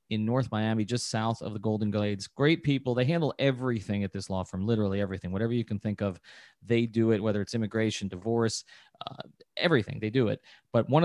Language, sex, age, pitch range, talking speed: English, male, 30-49, 105-130 Hz, 210 wpm